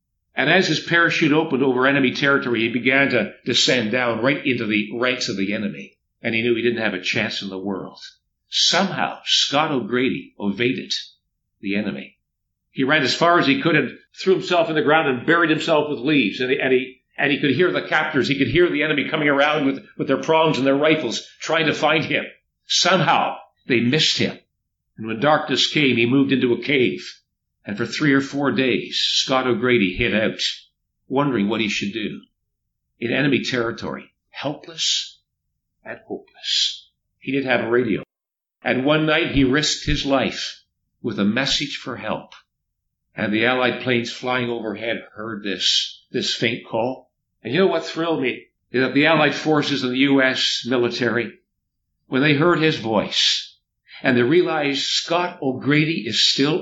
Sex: male